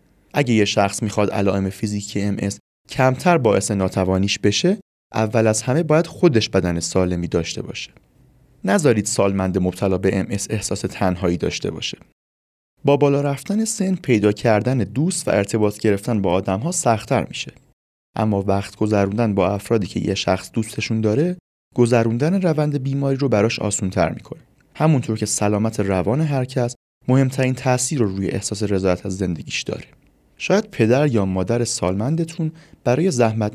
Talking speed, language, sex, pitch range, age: 155 wpm, Persian, male, 100-135 Hz, 30-49